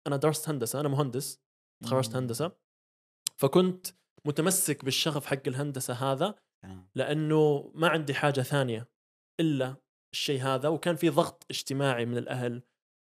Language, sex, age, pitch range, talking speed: Arabic, male, 20-39, 130-150 Hz, 125 wpm